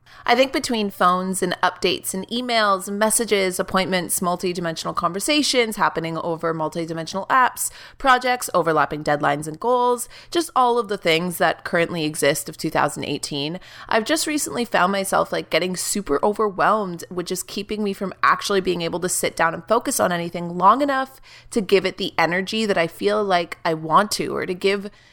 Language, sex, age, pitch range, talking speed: English, female, 30-49, 165-225 Hz, 170 wpm